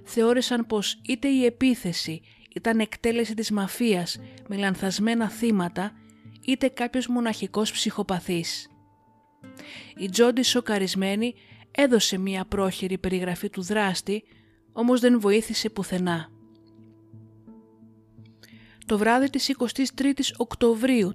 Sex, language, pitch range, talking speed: female, Greek, 180-230 Hz, 95 wpm